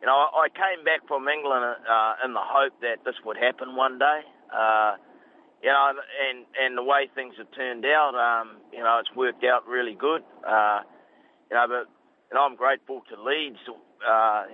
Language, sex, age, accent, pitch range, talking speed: English, male, 40-59, Australian, 115-130 Hz, 200 wpm